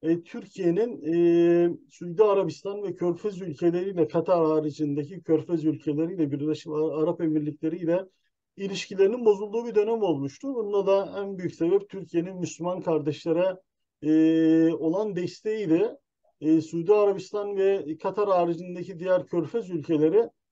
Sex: male